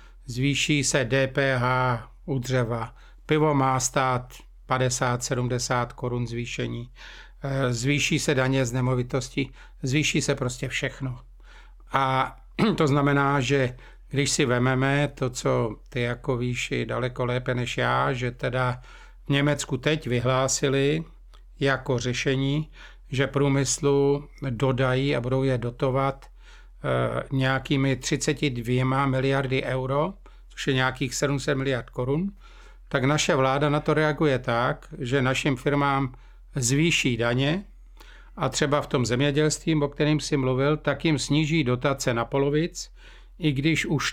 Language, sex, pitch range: Czech, male, 130-145 Hz